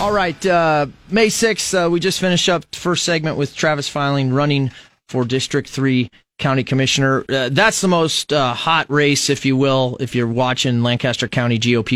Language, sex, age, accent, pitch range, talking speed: English, male, 30-49, American, 125-160 Hz, 190 wpm